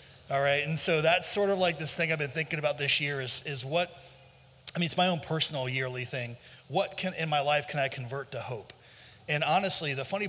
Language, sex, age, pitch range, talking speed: English, male, 30-49, 135-165 Hz, 240 wpm